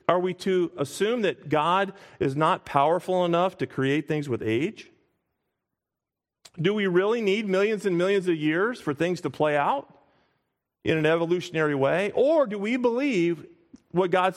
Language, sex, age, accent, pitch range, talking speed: English, male, 40-59, American, 155-215 Hz, 165 wpm